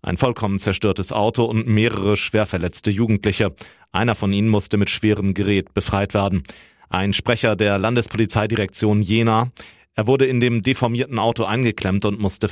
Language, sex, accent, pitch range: German, male, German, 95-110 Hz